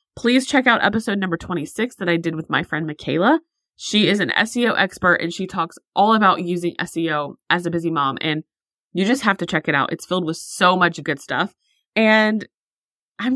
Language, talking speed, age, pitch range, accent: English, 205 wpm, 20-39, 165-210 Hz, American